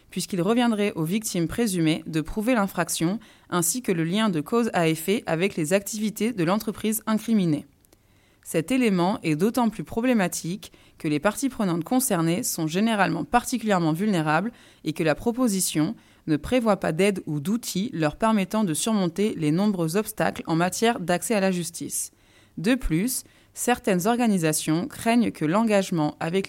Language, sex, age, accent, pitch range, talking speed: French, female, 20-39, French, 160-220 Hz, 155 wpm